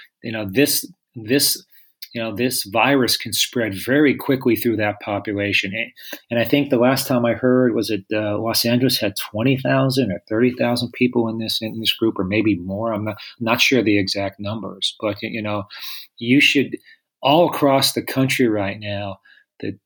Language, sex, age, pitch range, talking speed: English, male, 40-59, 105-130 Hz, 195 wpm